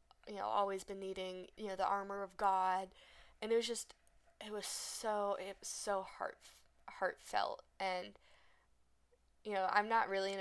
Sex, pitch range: female, 185-215 Hz